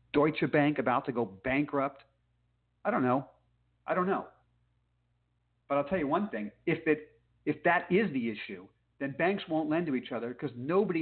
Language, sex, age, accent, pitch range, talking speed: English, male, 50-69, American, 120-170 Hz, 180 wpm